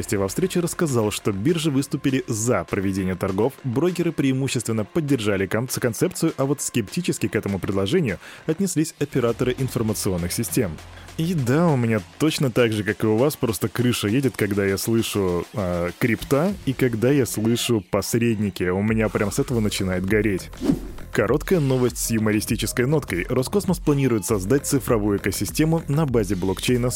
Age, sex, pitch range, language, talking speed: 20-39, male, 105-135 Hz, Russian, 150 wpm